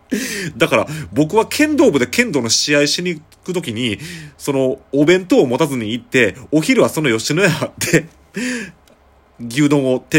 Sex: male